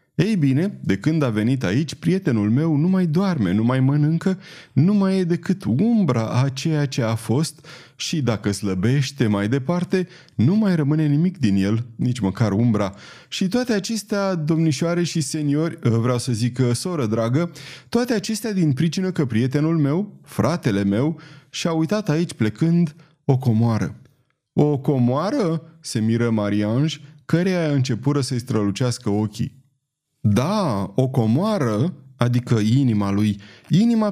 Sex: male